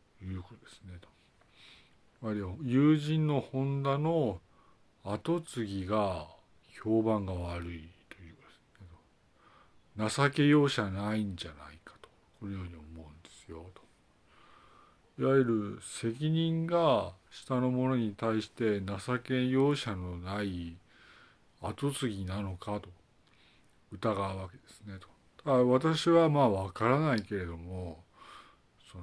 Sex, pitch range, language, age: male, 95-125 Hz, Japanese, 50-69